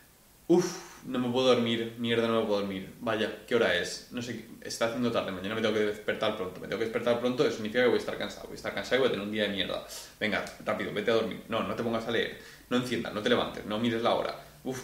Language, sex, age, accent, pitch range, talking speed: Spanish, male, 20-39, Spanish, 75-120 Hz, 285 wpm